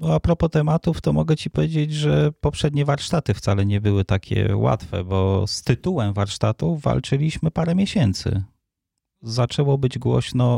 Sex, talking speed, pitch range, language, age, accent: male, 140 wpm, 95-125 Hz, Polish, 30-49, native